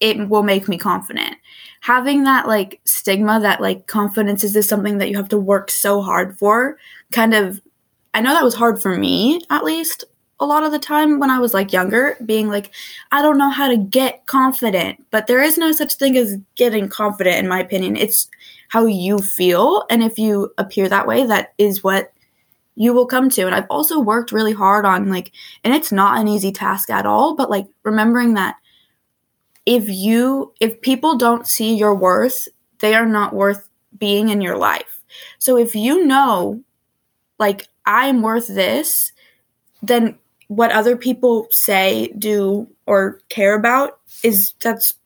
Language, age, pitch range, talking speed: English, 10-29, 200-250 Hz, 180 wpm